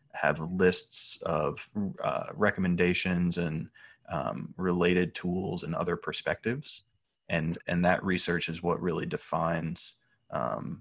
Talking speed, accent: 115 wpm, American